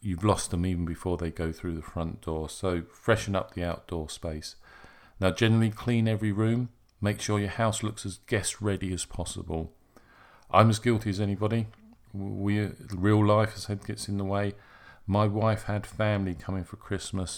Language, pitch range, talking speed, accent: English, 95-110 Hz, 180 wpm, British